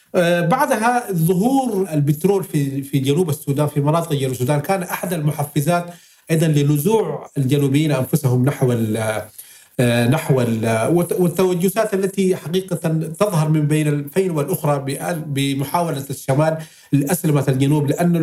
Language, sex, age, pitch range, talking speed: Arabic, male, 40-59, 150-195 Hz, 110 wpm